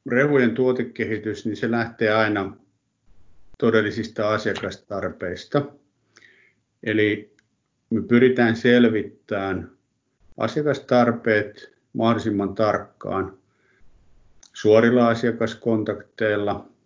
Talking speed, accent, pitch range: 60 wpm, native, 100-115 Hz